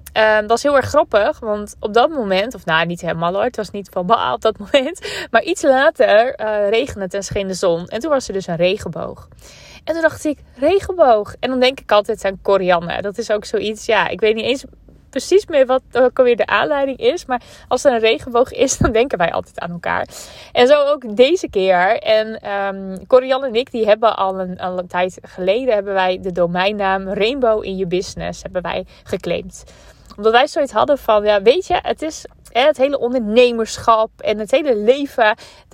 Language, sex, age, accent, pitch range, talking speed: Dutch, female, 20-39, Dutch, 200-275 Hz, 210 wpm